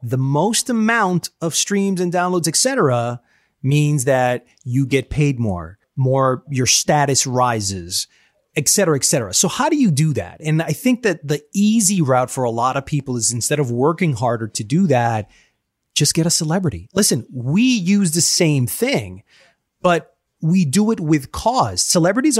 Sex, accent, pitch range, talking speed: male, American, 125-180 Hz, 175 wpm